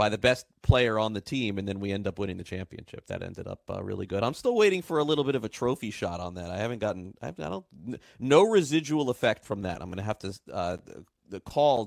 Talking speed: 270 wpm